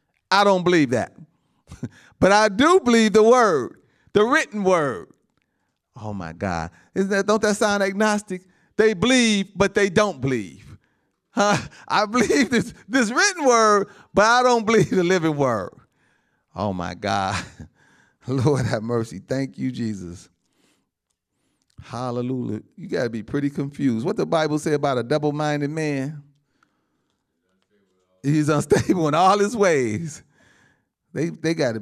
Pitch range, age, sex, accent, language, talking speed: 125-205 Hz, 40-59, male, American, English, 140 wpm